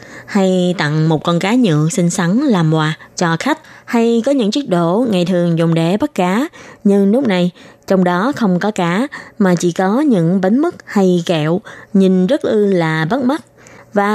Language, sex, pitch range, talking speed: Vietnamese, female, 170-215 Hz, 195 wpm